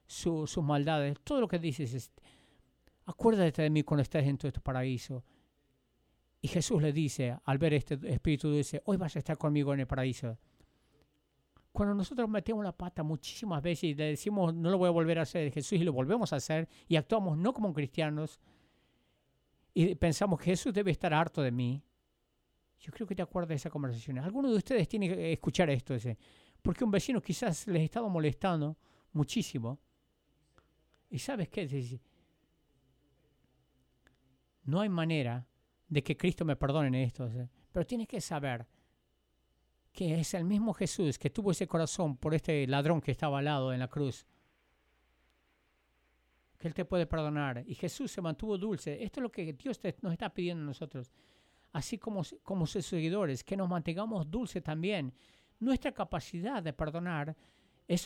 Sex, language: male, English